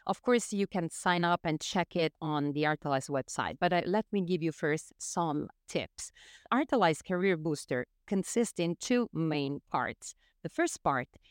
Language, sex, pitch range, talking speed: English, female, 150-210 Hz, 175 wpm